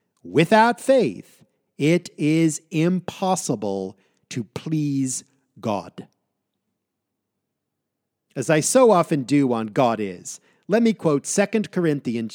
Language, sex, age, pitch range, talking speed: English, male, 50-69, 130-190 Hz, 100 wpm